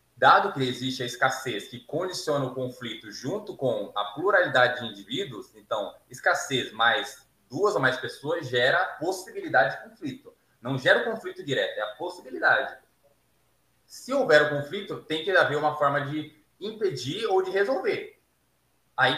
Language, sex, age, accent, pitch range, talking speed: Portuguese, male, 20-39, Brazilian, 130-205 Hz, 155 wpm